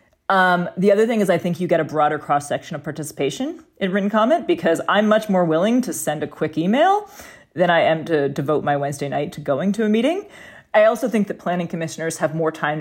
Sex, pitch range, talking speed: female, 150-190 Hz, 235 wpm